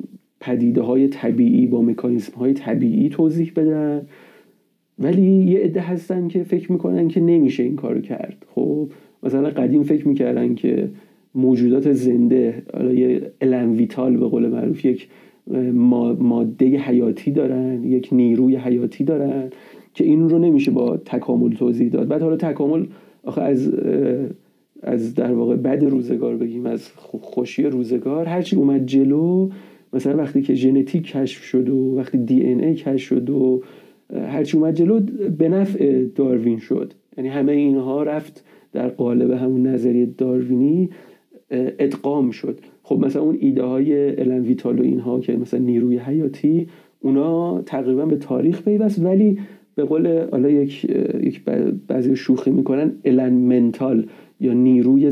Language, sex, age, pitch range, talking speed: Persian, male, 40-59, 125-160 Hz, 135 wpm